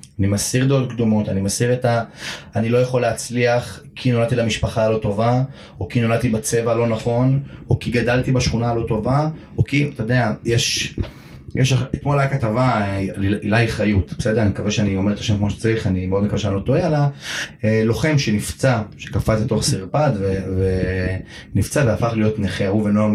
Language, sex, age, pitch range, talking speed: Hebrew, male, 30-49, 105-135 Hz, 180 wpm